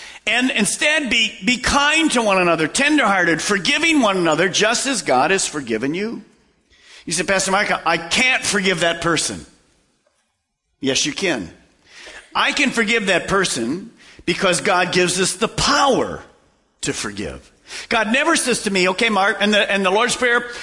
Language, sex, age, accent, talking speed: English, male, 50-69, American, 165 wpm